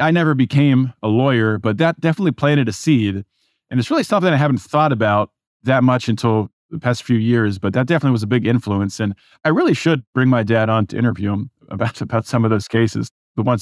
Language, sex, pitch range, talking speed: English, male, 110-125 Hz, 230 wpm